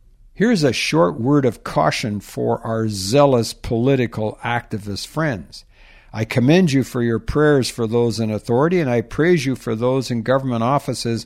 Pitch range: 115-155 Hz